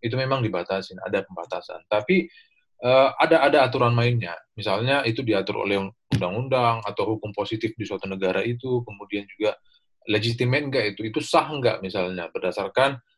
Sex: male